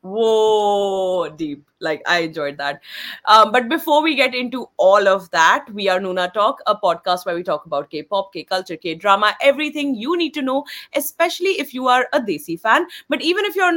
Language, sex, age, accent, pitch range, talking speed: English, female, 30-49, Indian, 190-280 Hz, 190 wpm